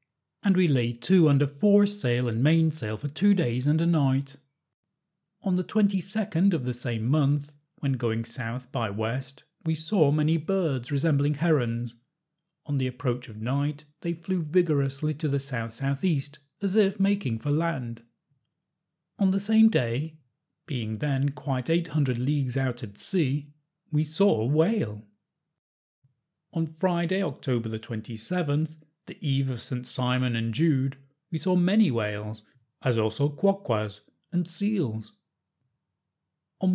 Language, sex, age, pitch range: English, male, 40-59, 125-165 Hz